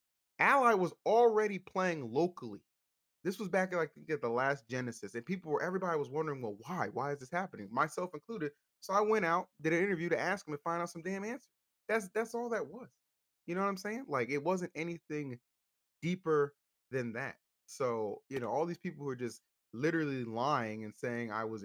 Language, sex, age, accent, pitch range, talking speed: English, male, 20-39, American, 115-170 Hz, 215 wpm